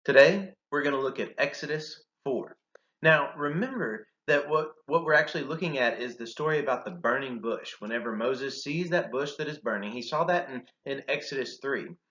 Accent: American